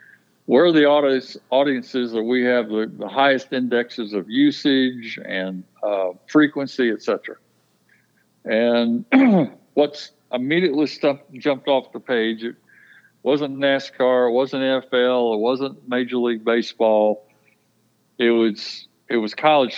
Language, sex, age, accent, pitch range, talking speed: English, male, 60-79, American, 110-140 Hz, 130 wpm